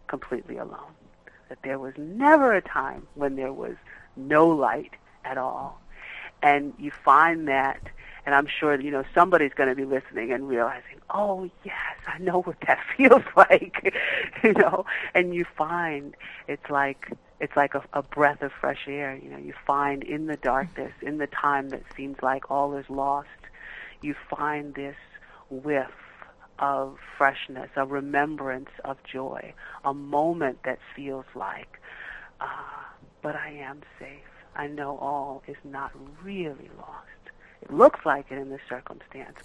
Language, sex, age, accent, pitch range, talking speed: English, female, 40-59, American, 135-150 Hz, 160 wpm